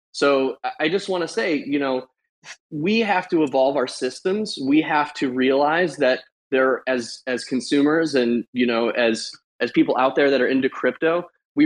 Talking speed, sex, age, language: 185 wpm, male, 20-39, English